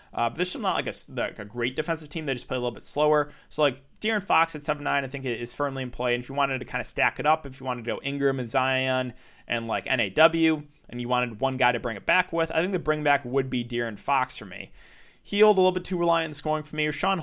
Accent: American